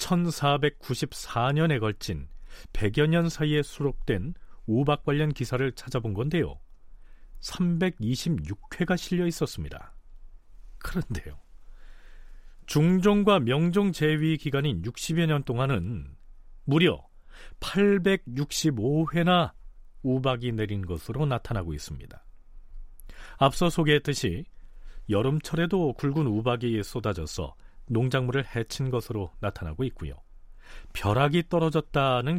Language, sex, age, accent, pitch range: Korean, male, 40-59, native, 95-150 Hz